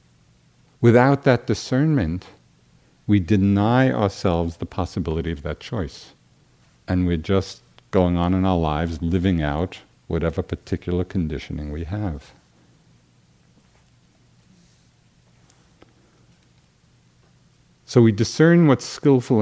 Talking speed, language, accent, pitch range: 95 wpm, English, American, 75-105 Hz